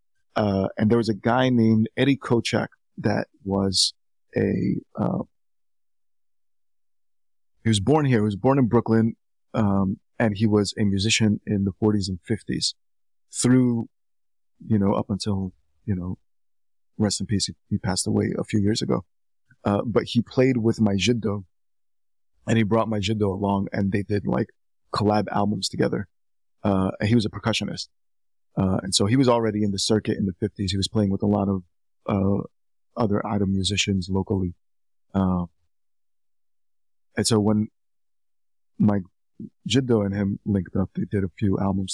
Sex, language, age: male, English, 30-49